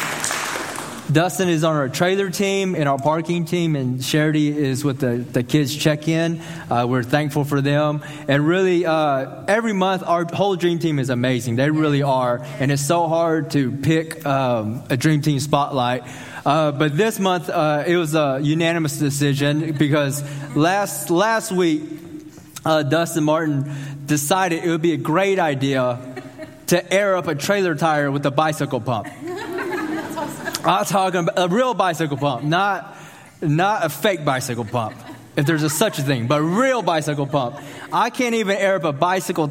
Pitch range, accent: 145-205 Hz, American